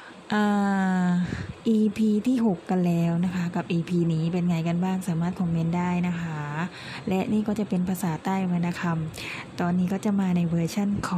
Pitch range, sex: 175-200 Hz, female